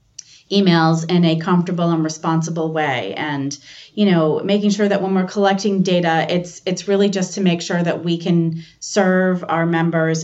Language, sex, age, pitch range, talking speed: English, female, 30-49, 155-185 Hz, 175 wpm